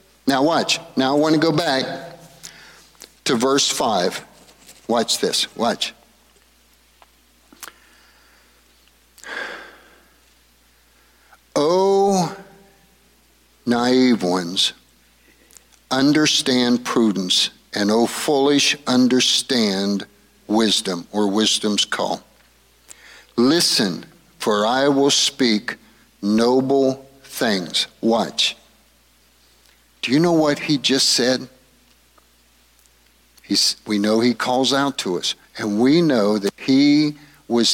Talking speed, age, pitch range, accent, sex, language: 90 wpm, 50-69, 100-145 Hz, American, male, English